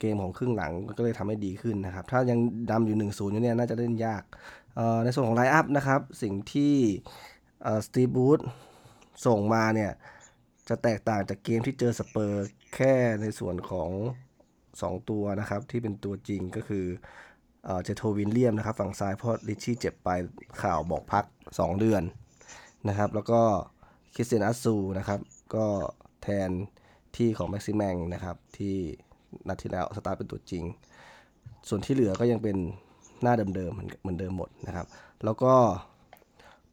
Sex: male